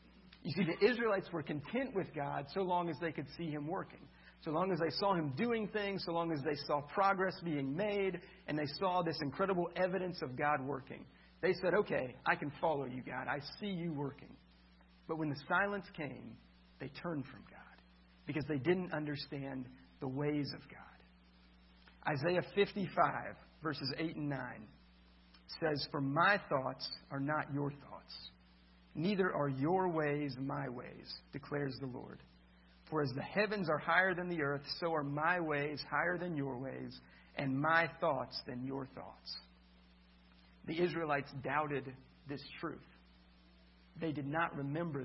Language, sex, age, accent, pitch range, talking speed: English, male, 50-69, American, 125-165 Hz, 165 wpm